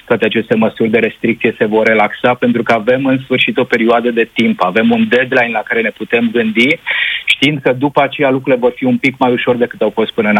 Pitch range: 120-135 Hz